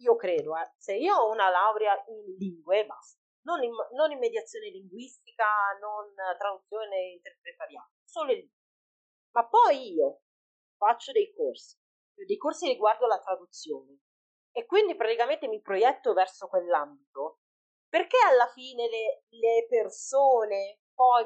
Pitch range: 195-300 Hz